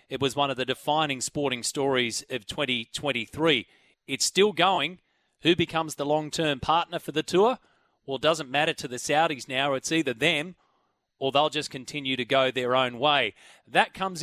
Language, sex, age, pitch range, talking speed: English, male, 30-49, 135-165 Hz, 180 wpm